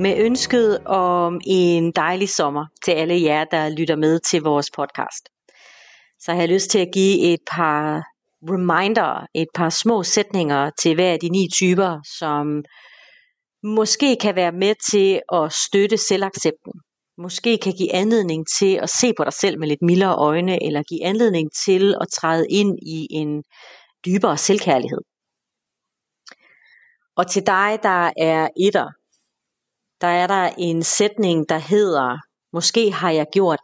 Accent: native